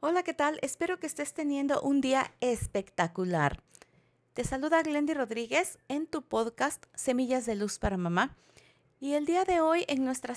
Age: 40-59